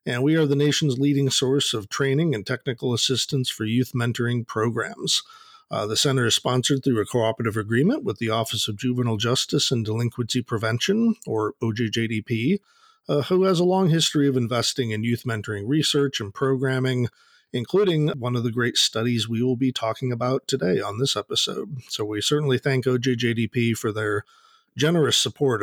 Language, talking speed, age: English, 175 wpm, 40-59